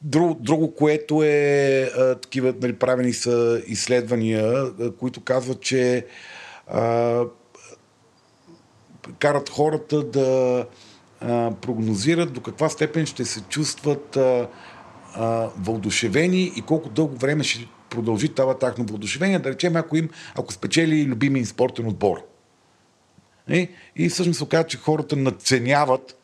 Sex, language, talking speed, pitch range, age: male, Bulgarian, 120 wpm, 115-140 Hz, 50-69